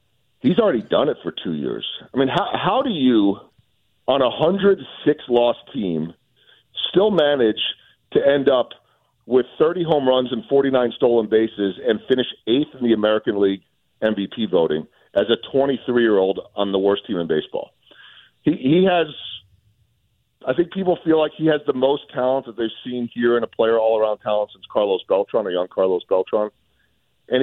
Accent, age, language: American, 40-59, English